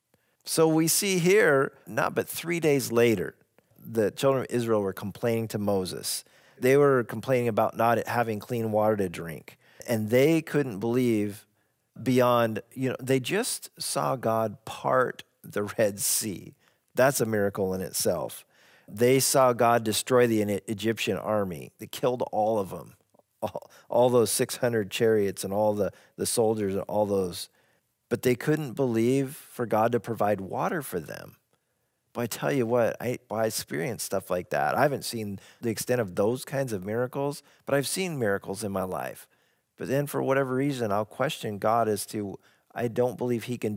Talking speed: 175 wpm